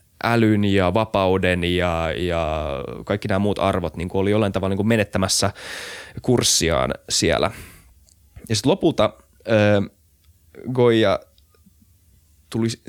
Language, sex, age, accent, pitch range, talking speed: Finnish, male, 20-39, native, 90-115 Hz, 100 wpm